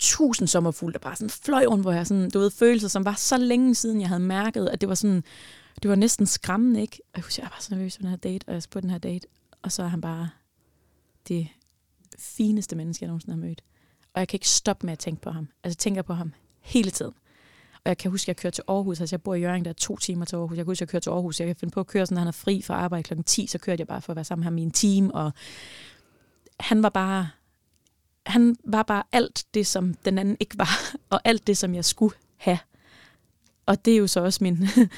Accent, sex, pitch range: native, female, 175-215 Hz